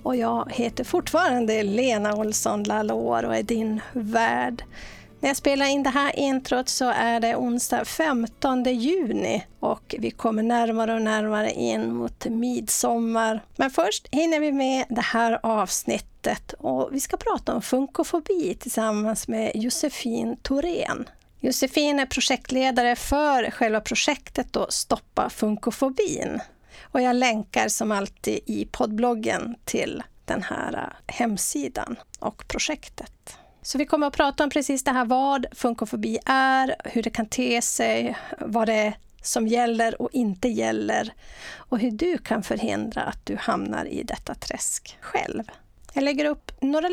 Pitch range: 225-275 Hz